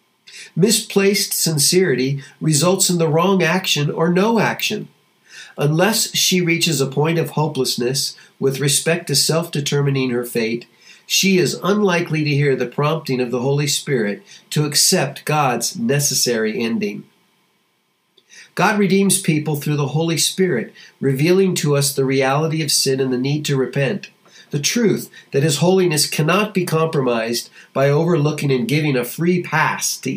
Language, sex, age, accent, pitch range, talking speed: English, male, 50-69, American, 135-185 Hz, 145 wpm